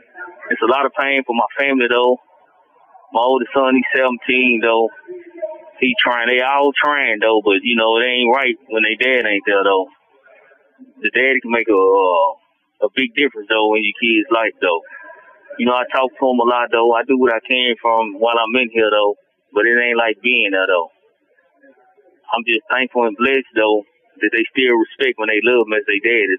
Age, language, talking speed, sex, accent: 30-49, English, 205 wpm, male, American